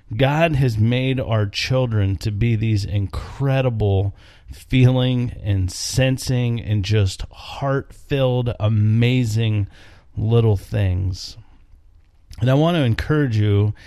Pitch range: 95-120 Hz